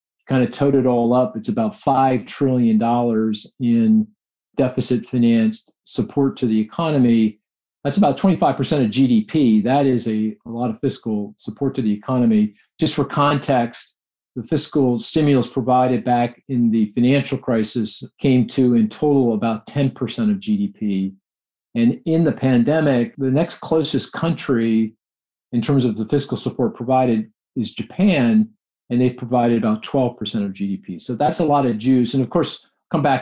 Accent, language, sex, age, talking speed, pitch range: American, English, male, 50-69, 155 wpm, 115-150 Hz